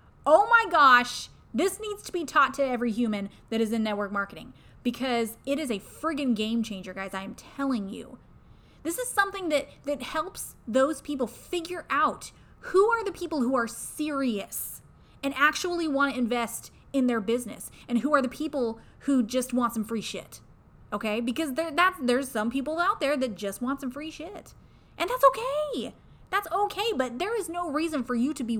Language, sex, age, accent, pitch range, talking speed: English, female, 20-39, American, 230-310 Hz, 195 wpm